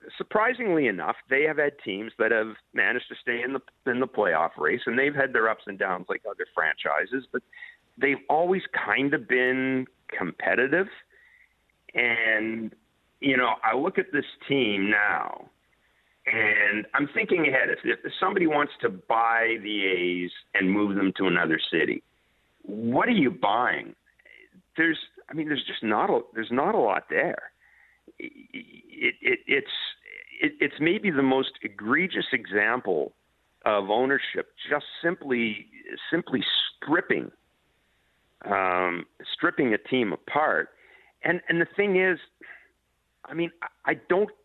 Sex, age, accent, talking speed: male, 50-69, American, 140 wpm